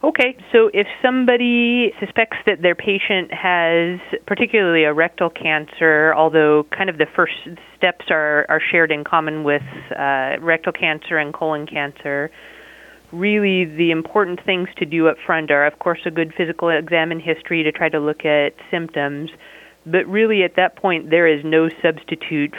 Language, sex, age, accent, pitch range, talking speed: English, female, 30-49, American, 150-175 Hz, 165 wpm